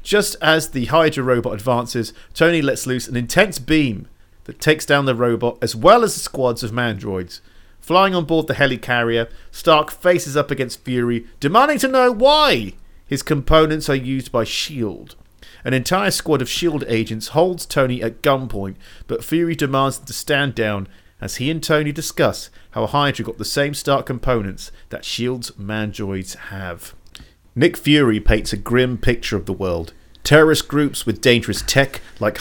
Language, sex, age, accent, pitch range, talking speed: English, male, 40-59, British, 105-145 Hz, 170 wpm